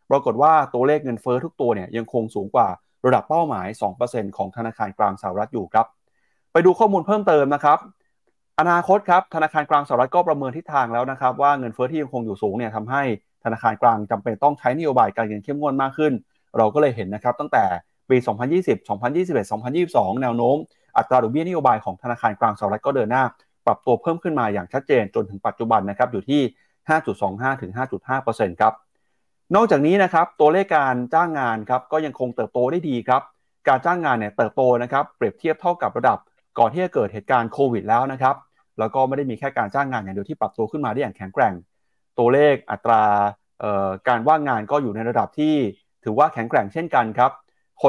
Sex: male